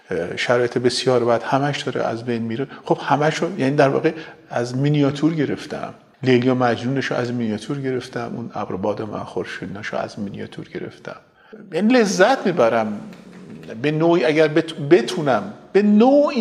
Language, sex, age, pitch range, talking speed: Persian, male, 50-69, 135-190 Hz, 145 wpm